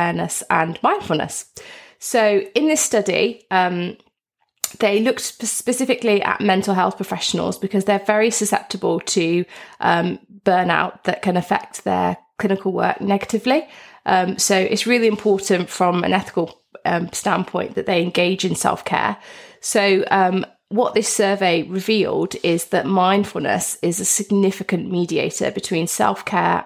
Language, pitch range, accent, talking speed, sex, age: English, 175-210 Hz, British, 135 wpm, female, 20-39